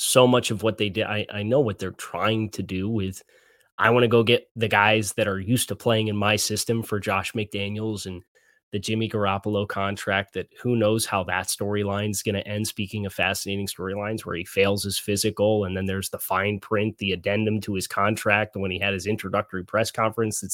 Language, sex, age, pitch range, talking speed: English, male, 20-39, 100-115 Hz, 220 wpm